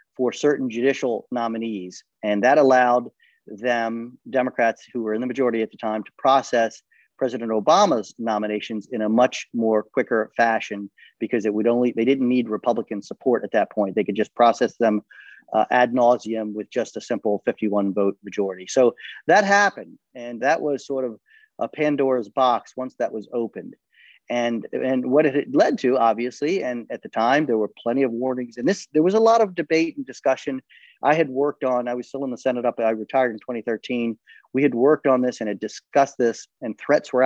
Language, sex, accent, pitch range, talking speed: English, male, American, 110-135 Hz, 200 wpm